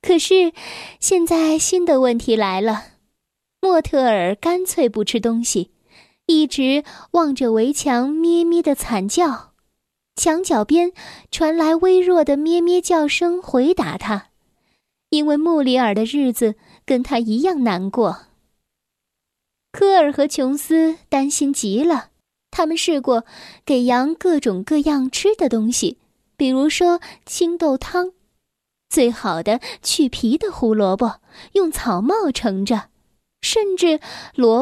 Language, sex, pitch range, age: Chinese, female, 230-335 Hz, 10-29